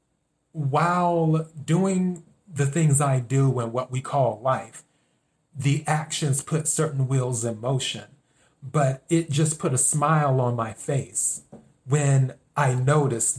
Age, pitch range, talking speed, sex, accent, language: 30-49, 125-150 Hz, 135 wpm, male, American, English